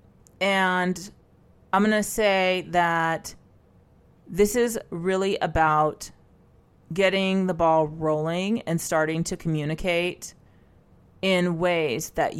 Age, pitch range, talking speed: 30-49, 150-180 Hz, 100 wpm